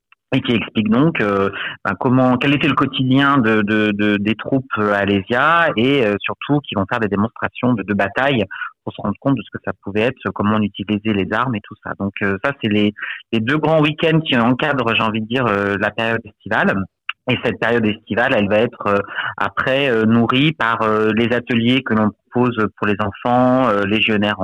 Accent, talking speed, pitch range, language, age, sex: French, 215 wpm, 100-125 Hz, French, 30-49, male